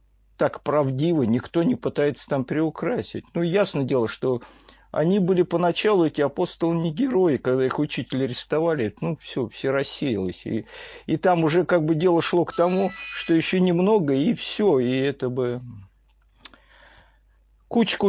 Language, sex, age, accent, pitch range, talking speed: Russian, male, 50-69, native, 130-185 Hz, 150 wpm